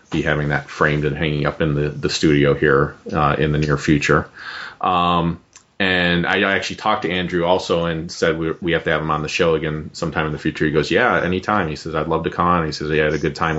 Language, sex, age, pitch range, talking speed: English, male, 30-49, 80-95 Hz, 255 wpm